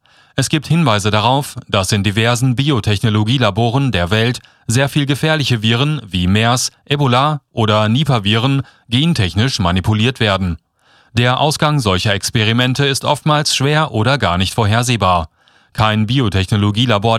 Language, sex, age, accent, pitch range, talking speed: German, male, 30-49, German, 105-140 Hz, 120 wpm